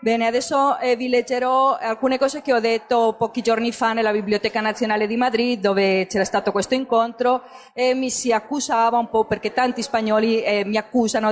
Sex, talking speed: female, 175 wpm